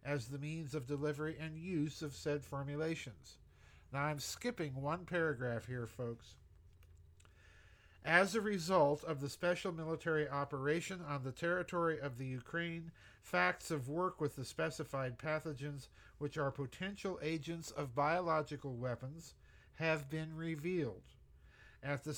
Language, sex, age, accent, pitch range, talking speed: English, male, 50-69, American, 135-165 Hz, 135 wpm